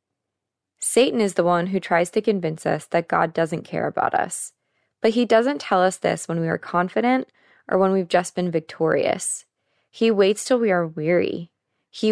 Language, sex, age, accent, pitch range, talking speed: English, female, 20-39, American, 155-205 Hz, 190 wpm